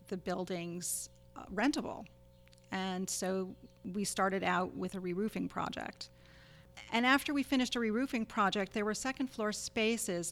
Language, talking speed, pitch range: English, 140 wpm, 185-215 Hz